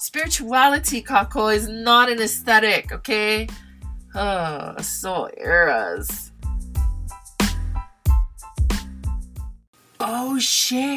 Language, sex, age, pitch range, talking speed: English, female, 20-39, 155-220 Hz, 65 wpm